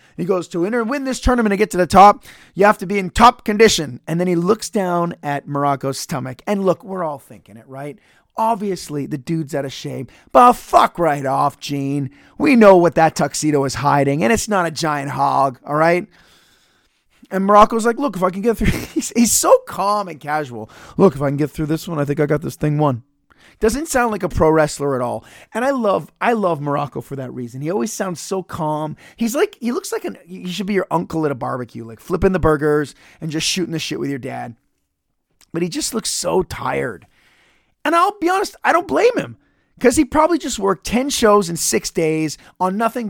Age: 30-49